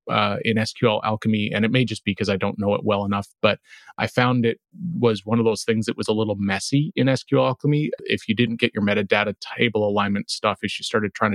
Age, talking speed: 30-49, 245 wpm